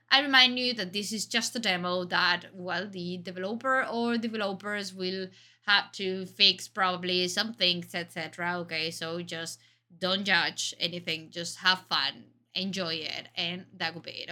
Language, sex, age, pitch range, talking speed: Danish, female, 20-39, 170-220 Hz, 165 wpm